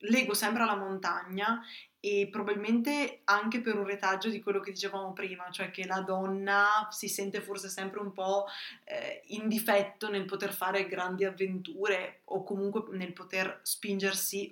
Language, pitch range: Italian, 185-220 Hz